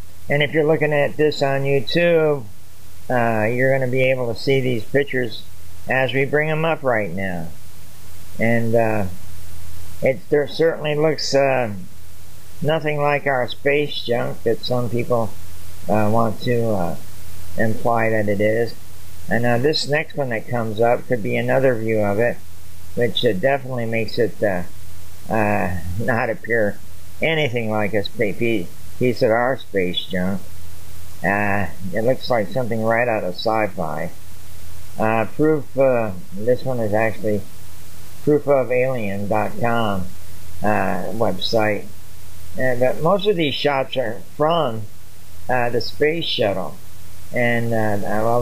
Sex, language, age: male, English, 50-69